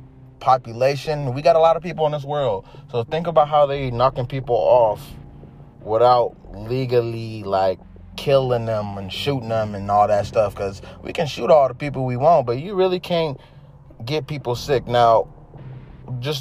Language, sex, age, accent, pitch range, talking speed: English, male, 20-39, American, 110-135 Hz, 175 wpm